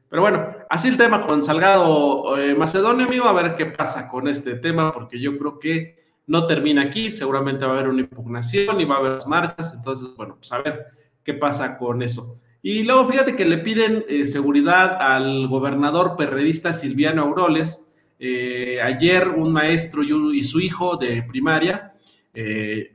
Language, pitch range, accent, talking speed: Spanish, 130-165 Hz, Mexican, 180 wpm